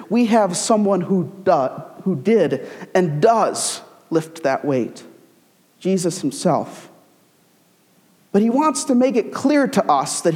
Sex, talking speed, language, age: male, 140 wpm, English, 50-69